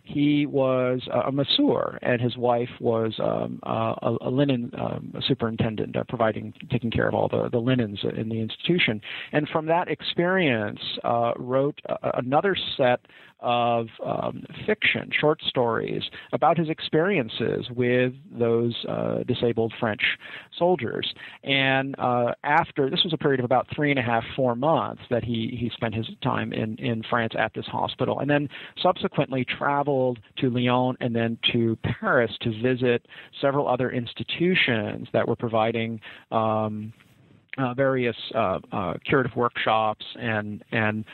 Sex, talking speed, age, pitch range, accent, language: male, 150 wpm, 40-59, 115-135 Hz, American, English